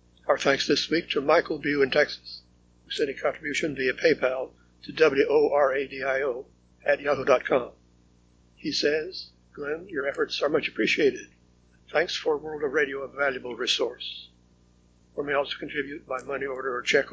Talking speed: 155 wpm